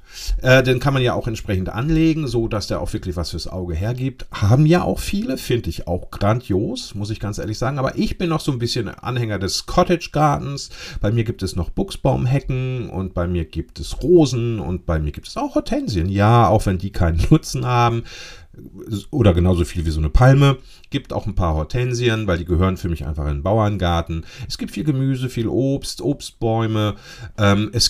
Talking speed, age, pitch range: 205 wpm, 40-59, 90-130 Hz